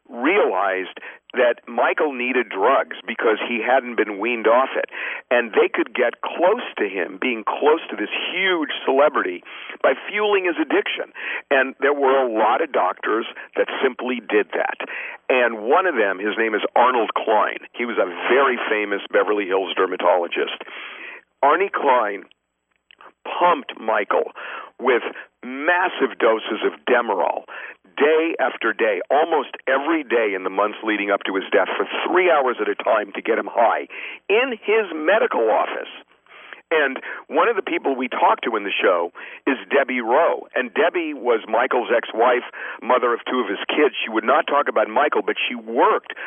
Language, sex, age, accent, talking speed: English, male, 50-69, American, 165 wpm